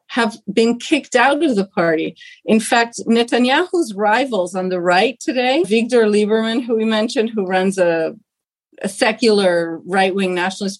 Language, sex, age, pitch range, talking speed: English, female, 40-59, 195-240 Hz, 150 wpm